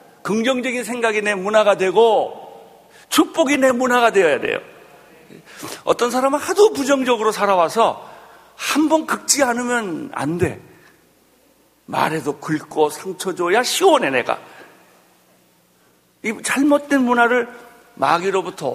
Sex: male